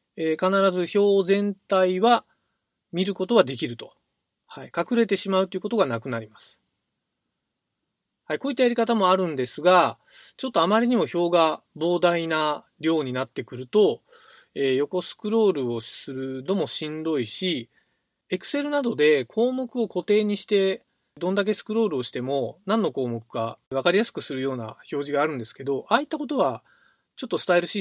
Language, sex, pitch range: Japanese, male, 130-215 Hz